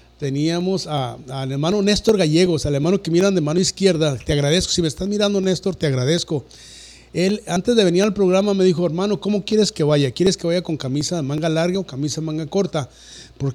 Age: 50-69